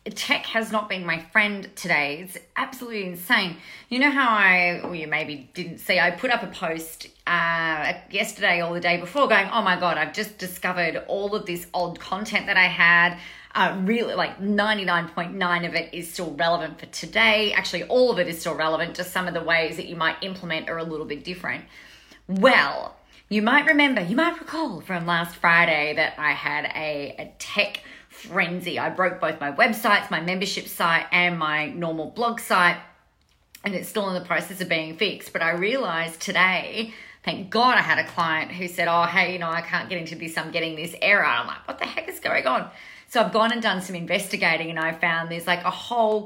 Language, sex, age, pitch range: English, female, 30-49, 170-205 Hz